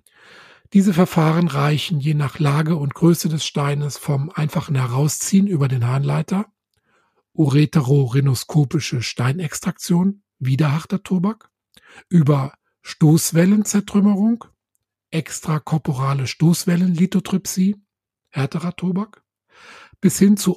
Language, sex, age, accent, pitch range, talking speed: German, male, 50-69, German, 145-180 Hz, 85 wpm